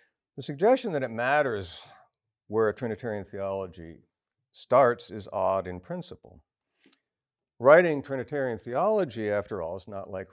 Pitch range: 90-115 Hz